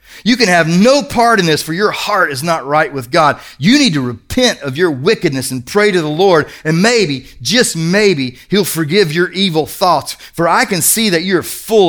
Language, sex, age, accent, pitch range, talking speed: English, male, 40-59, American, 130-175 Hz, 215 wpm